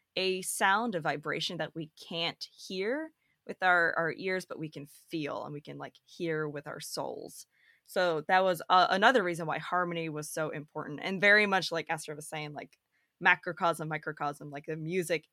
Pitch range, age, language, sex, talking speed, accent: 155-185 Hz, 20-39, English, female, 190 wpm, American